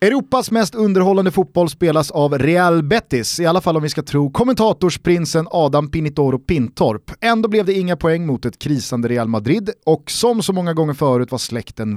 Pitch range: 130-185 Hz